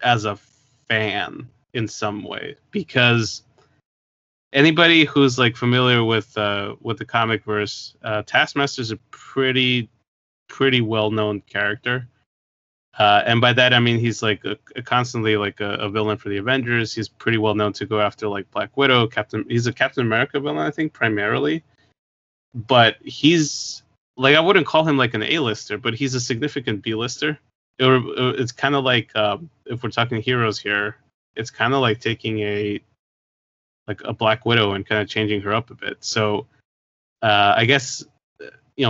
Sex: male